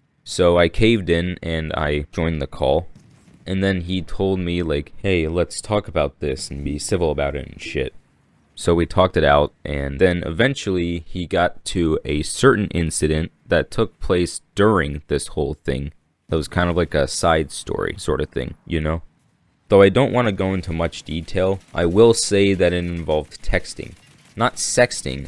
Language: English